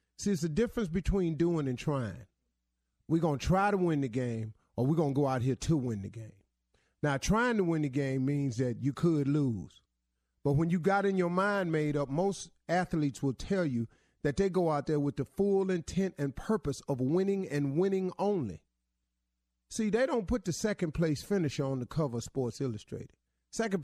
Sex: male